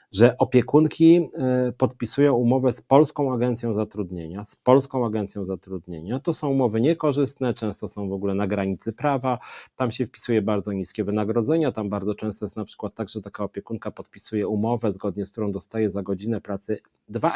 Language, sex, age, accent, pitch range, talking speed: Polish, male, 40-59, native, 100-125 Hz, 170 wpm